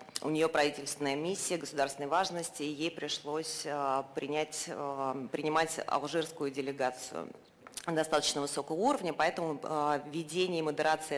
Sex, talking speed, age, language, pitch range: female, 105 wpm, 30-49, Russian, 150-175 Hz